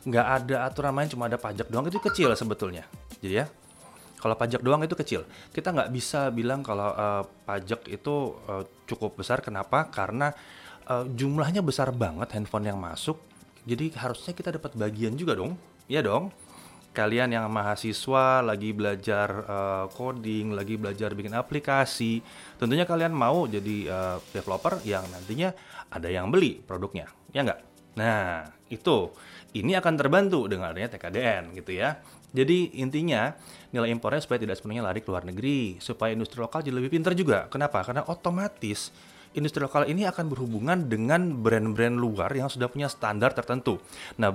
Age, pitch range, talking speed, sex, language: 30-49, 105-140 Hz, 160 wpm, male, Indonesian